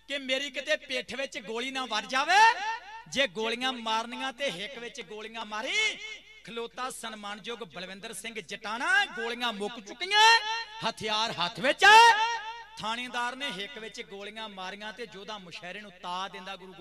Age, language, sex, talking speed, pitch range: 40-59, Punjabi, male, 95 wpm, 180-240 Hz